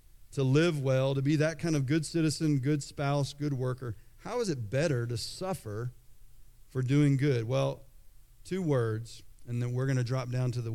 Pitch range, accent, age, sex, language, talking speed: 115-155 Hz, American, 40-59, male, English, 195 wpm